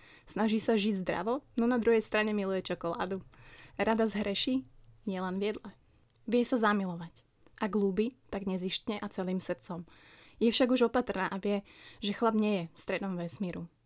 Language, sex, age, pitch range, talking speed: Slovak, female, 20-39, 185-220 Hz, 160 wpm